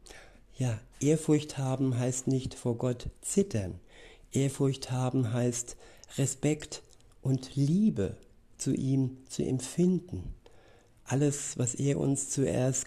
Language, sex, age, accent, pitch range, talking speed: German, male, 60-79, German, 120-140 Hz, 105 wpm